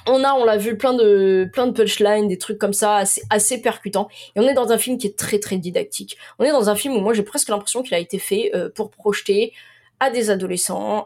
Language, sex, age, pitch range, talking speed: French, female, 20-39, 180-230 Hz, 260 wpm